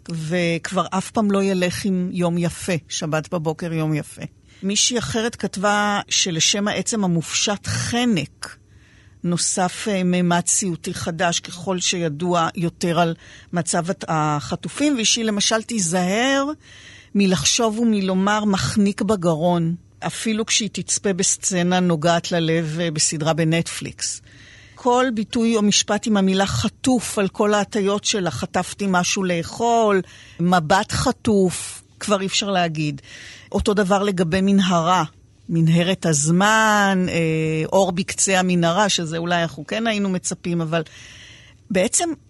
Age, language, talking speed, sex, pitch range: 50-69, Hebrew, 115 wpm, female, 170-210 Hz